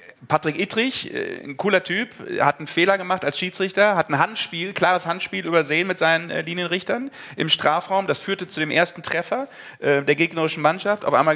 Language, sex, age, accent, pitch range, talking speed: German, male, 40-59, German, 135-175 Hz, 175 wpm